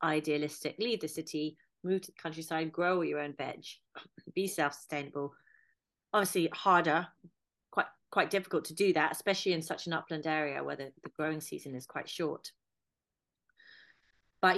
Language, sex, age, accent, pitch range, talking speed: English, female, 30-49, British, 145-170 Hz, 155 wpm